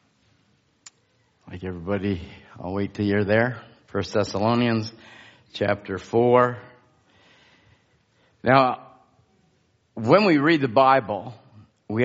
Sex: male